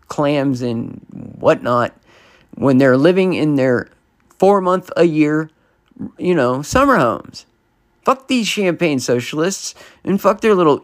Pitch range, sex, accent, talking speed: 135-180 Hz, male, American, 115 wpm